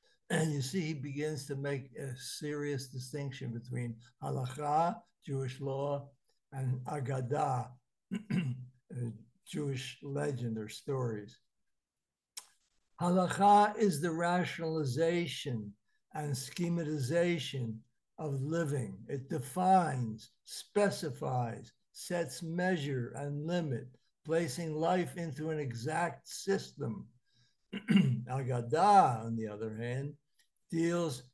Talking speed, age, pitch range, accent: 90 wpm, 60-79, 130-165 Hz, American